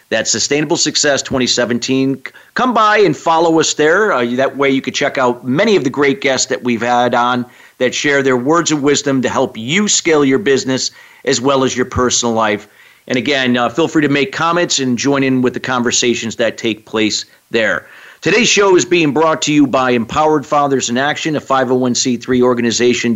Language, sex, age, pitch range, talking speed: English, male, 50-69, 125-155 Hz, 200 wpm